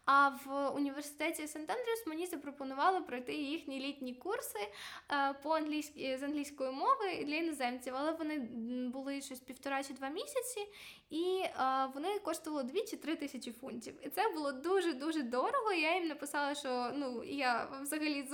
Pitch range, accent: 255-320 Hz, native